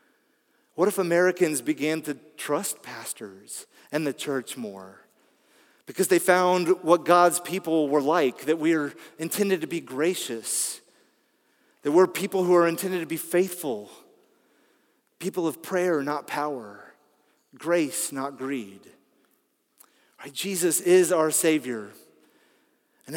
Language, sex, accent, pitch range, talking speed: English, male, American, 130-175 Hz, 125 wpm